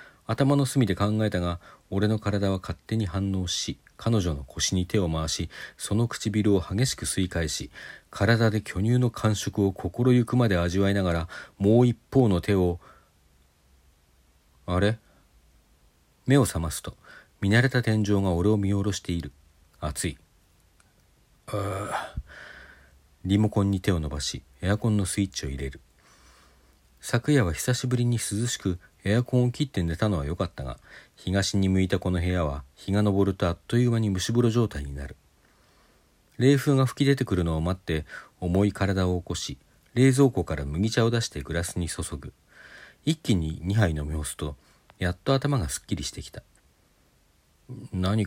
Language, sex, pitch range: Japanese, male, 80-110 Hz